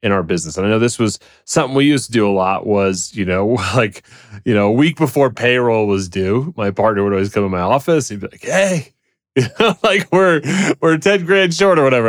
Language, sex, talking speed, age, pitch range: English, male, 235 wpm, 30-49, 100-135 Hz